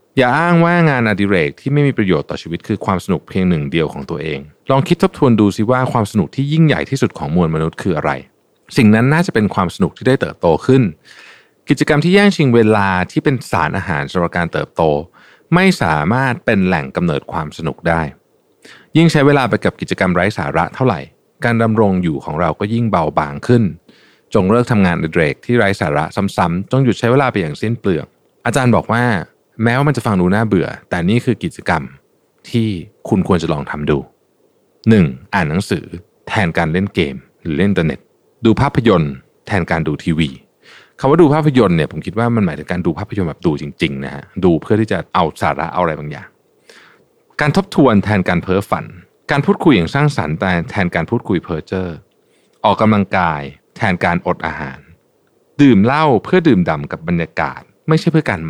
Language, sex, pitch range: Thai, male, 90-135 Hz